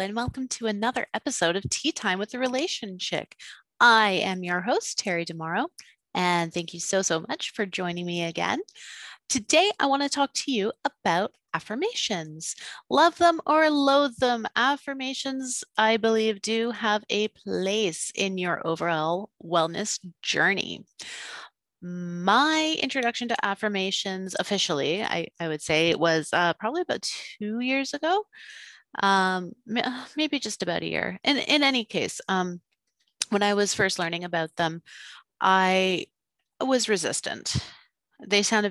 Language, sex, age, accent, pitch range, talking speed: English, female, 30-49, American, 175-250 Hz, 145 wpm